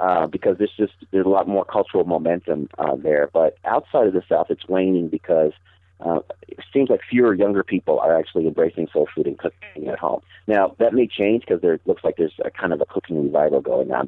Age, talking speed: 40-59, 225 wpm